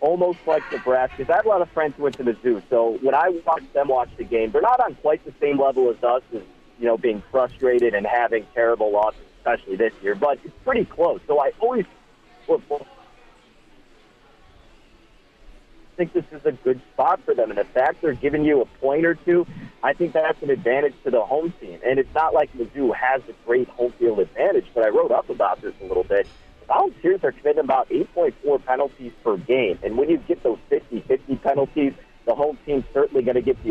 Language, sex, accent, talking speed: English, male, American, 210 wpm